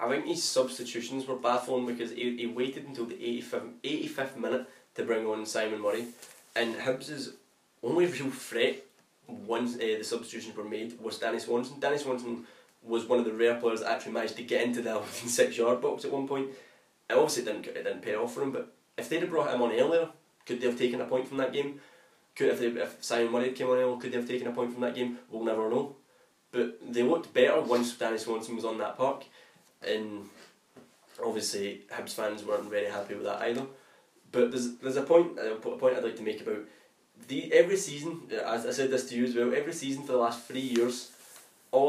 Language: English